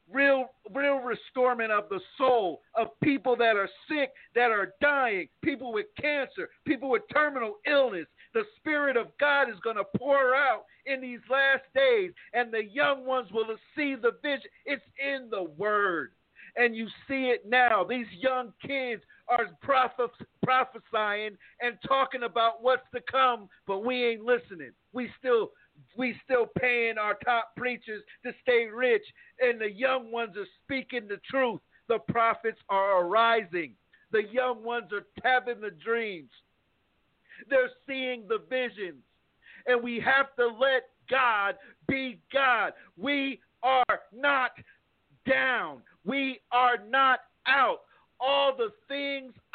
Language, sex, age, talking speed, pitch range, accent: English, male, 50-69, 145 wpm, 230-275 Hz, American